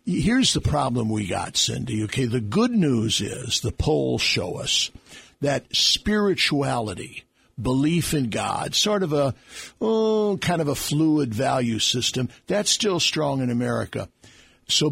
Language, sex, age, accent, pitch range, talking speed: English, male, 60-79, American, 120-165 Hz, 145 wpm